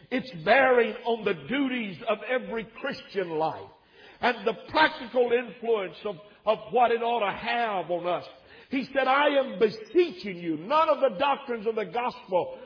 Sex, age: male, 50-69